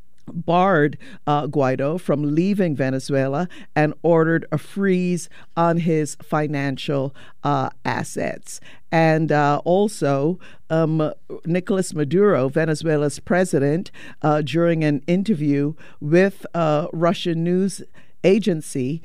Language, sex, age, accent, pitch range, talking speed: English, female, 50-69, American, 145-175 Hz, 100 wpm